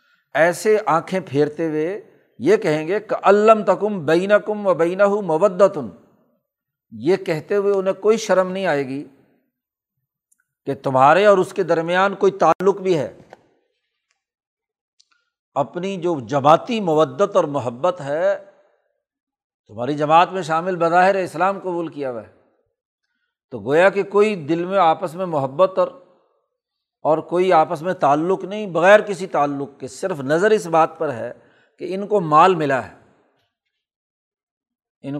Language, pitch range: Urdu, 155-200 Hz